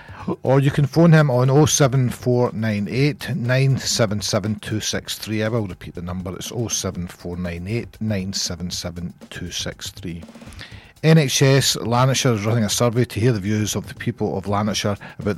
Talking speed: 120 wpm